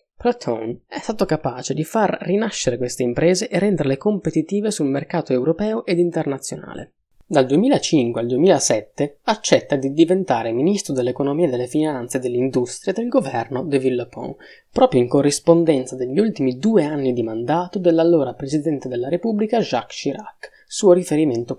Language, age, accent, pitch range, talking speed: Italian, 20-39, native, 130-185 Hz, 140 wpm